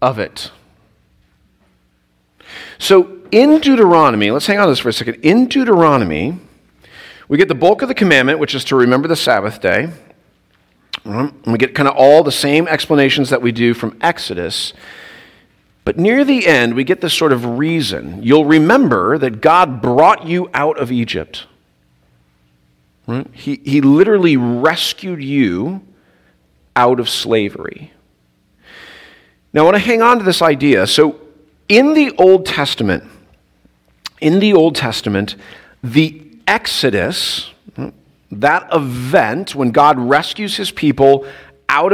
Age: 40-59